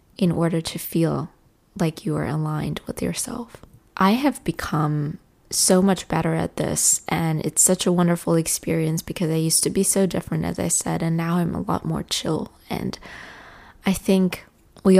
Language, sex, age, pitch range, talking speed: English, female, 20-39, 160-185 Hz, 180 wpm